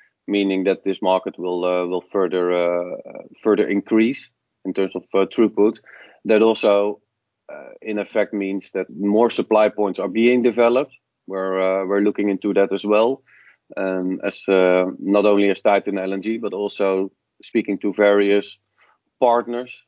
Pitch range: 95-110 Hz